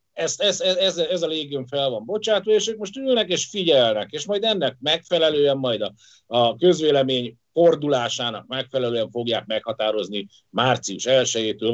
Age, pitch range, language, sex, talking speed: 50-69, 115-165 Hz, Hungarian, male, 150 wpm